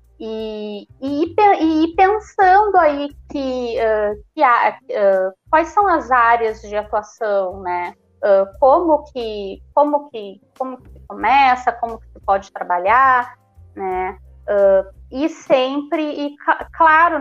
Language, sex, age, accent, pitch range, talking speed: Portuguese, female, 20-39, Brazilian, 205-285 Hz, 125 wpm